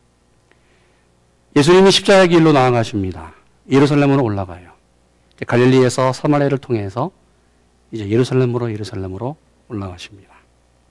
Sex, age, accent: male, 40-59, native